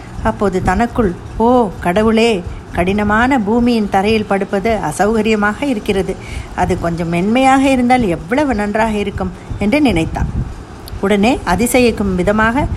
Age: 60-79